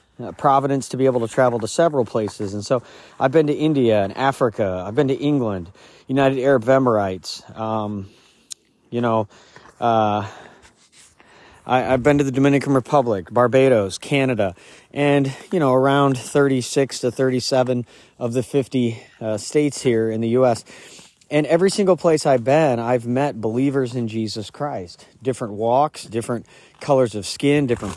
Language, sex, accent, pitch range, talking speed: English, male, American, 115-140 Hz, 155 wpm